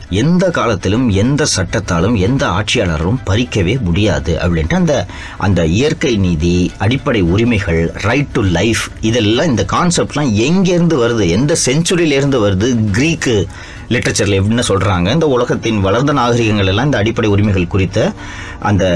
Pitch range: 95-125 Hz